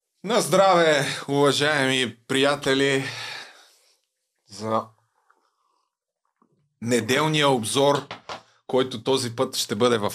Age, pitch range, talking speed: 20-39, 120-155 Hz, 75 wpm